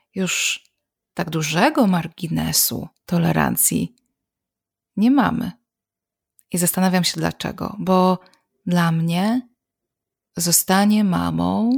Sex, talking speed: female, 80 wpm